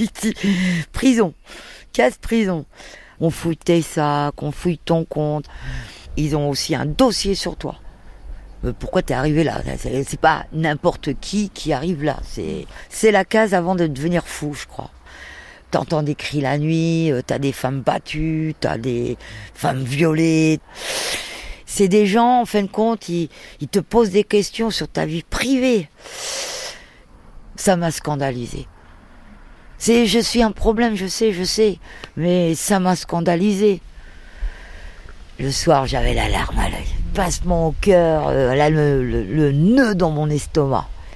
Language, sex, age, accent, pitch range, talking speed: French, female, 50-69, French, 140-200 Hz, 145 wpm